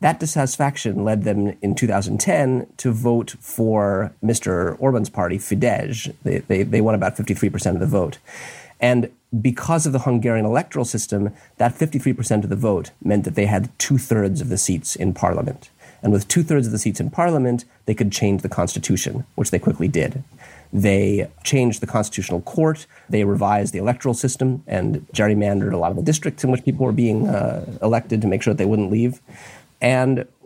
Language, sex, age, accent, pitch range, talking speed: English, male, 30-49, American, 105-130 Hz, 185 wpm